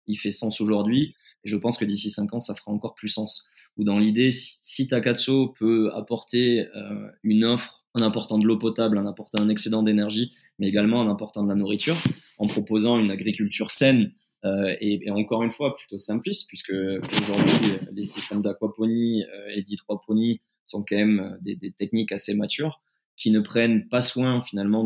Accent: French